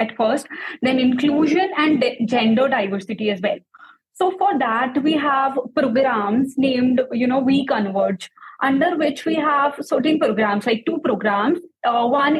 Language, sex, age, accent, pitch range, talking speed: English, female, 20-39, Indian, 240-300 Hz, 150 wpm